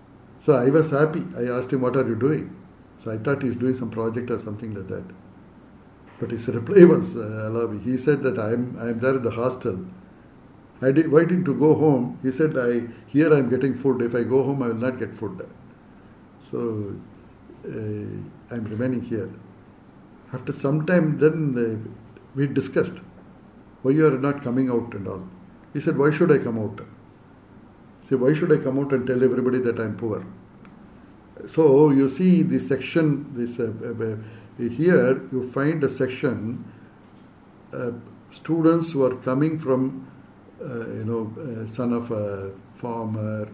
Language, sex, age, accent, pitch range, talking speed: English, male, 60-79, Indian, 110-140 Hz, 180 wpm